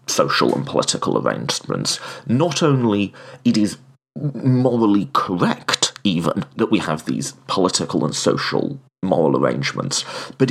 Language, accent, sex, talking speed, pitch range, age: English, British, male, 120 wpm, 100-130 Hz, 30-49